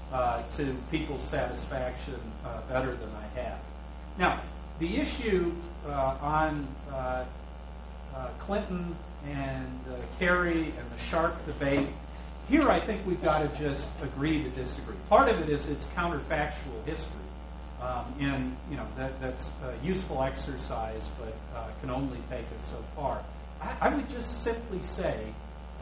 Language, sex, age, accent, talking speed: English, male, 40-59, American, 145 wpm